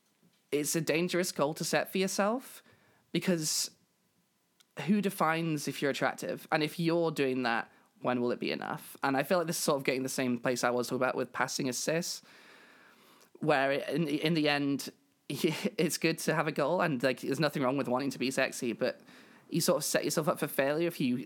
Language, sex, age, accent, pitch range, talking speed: English, male, 20-39, British, 130-170 Hz, 215 wpm